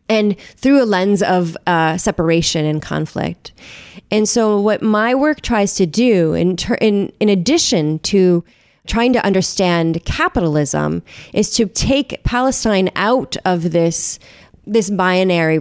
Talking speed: 140 wpm